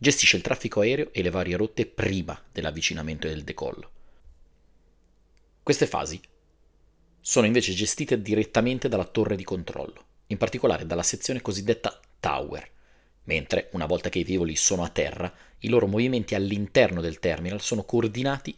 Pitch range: 85-115 Hz